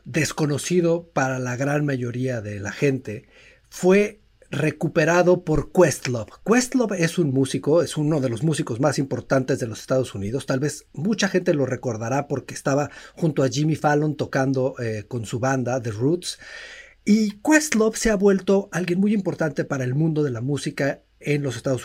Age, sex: 50-69, male